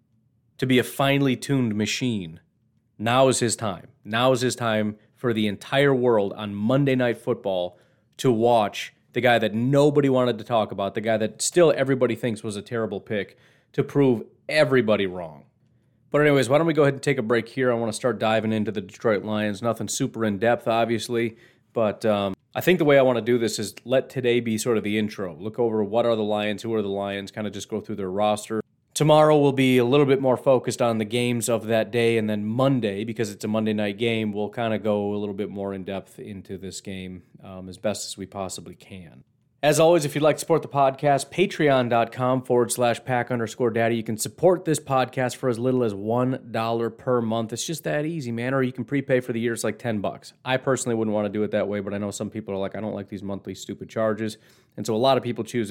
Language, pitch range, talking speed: English, 105-130 Hz, 240 wpm